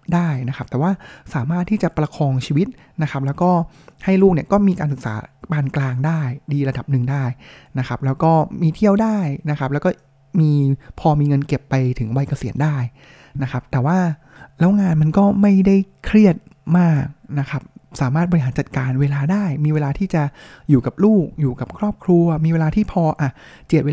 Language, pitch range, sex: Thai, 135-175 Hz, male